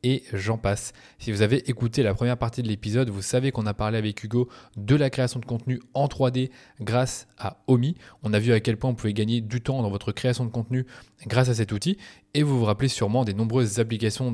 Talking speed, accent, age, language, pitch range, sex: 240 wpm, French, 20-39, French, 110-130 Hz, male